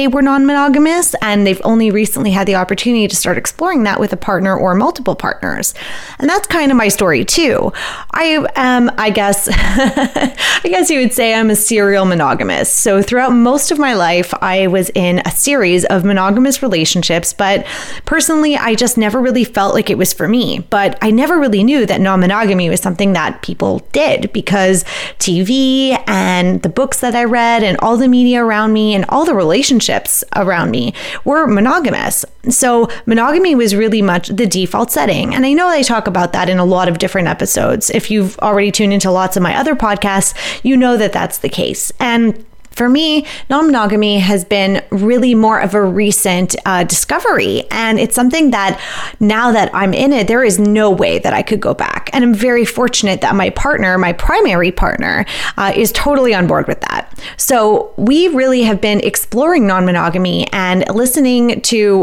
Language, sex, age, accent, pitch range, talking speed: English, female, 20-39, American, 195-255 Hz, 190 wpm